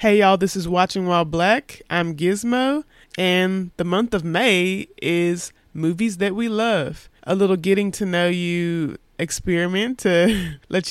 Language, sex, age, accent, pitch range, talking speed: English, male, 20-39, American, 170-195 Hz, 155 wpm